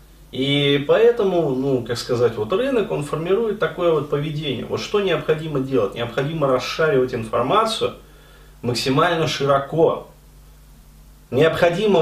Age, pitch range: 30-49, 130-190 Hz